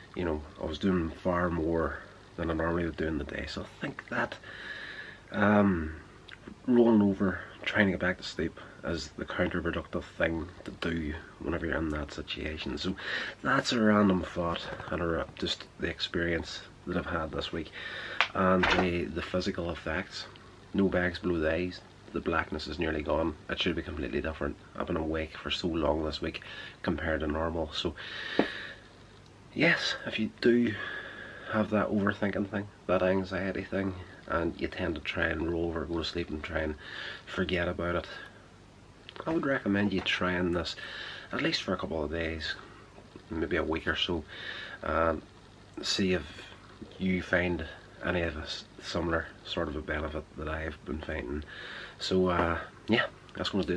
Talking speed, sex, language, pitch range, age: 175 wpm, male, English, 80-95 Hz, 30-49